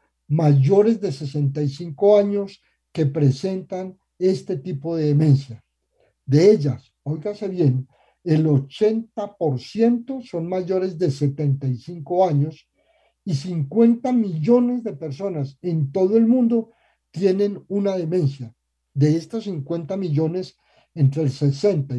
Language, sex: Spanish, male